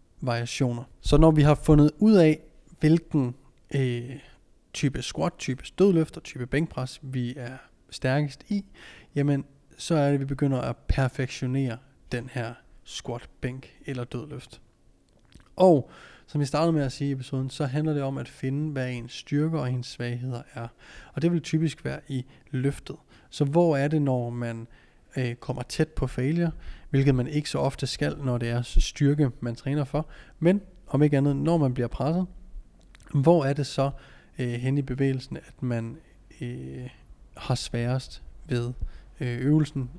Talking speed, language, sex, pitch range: 165 wpm, Danish, male, 125-150 Hz